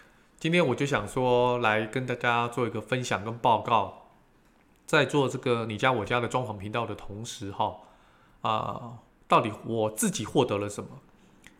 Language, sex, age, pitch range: Chinese, male, 20-39, 110-150 Hz